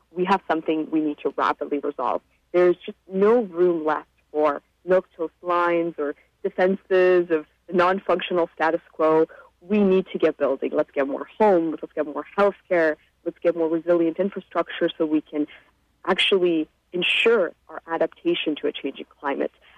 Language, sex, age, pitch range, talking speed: English, female, 30-49, 160-195 Hz, 165 wpm